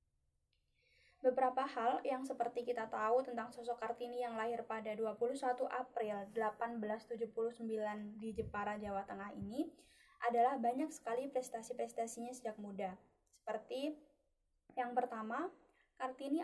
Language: Indonesian